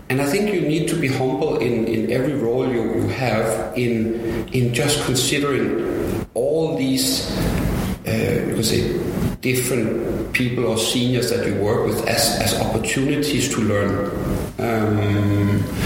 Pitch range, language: 115-155 Hz, English